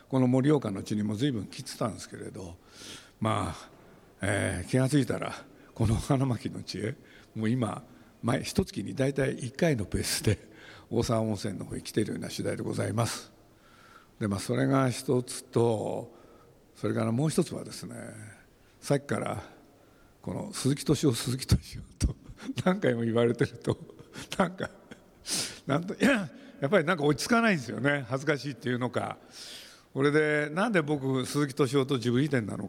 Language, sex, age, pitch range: Japanese, male, 60-79, 110-150 Hz